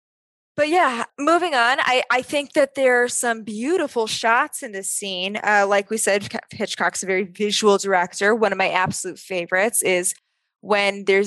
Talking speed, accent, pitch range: 175 wpm, American, 185-225 Hz